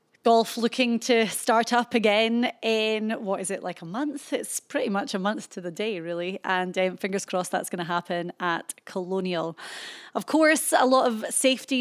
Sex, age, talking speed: female, 30-49, 195 wpm